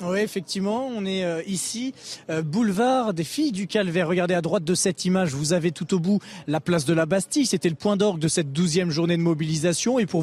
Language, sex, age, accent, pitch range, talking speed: French, male, 20-39, French, 170-205 Hz, 225 wpm